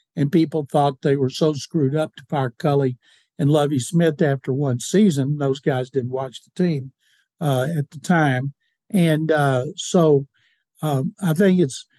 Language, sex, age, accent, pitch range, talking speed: English, male, 60-79, American, 140-175 Hz, 170 wpm